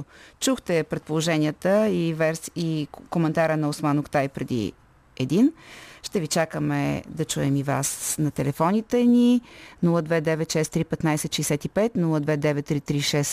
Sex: female